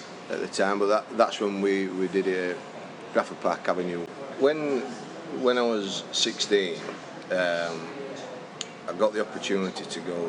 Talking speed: 150 wpm